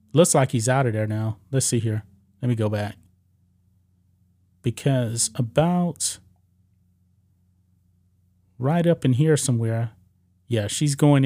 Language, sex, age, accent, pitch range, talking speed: English, male, 30-49, American, 95-140 Hz, 130 wpm